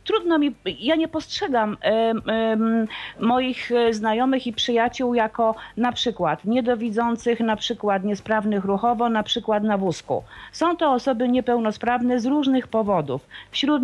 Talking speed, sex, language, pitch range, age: 125 wpm, female, Polish, 200-245 Hz, 40-59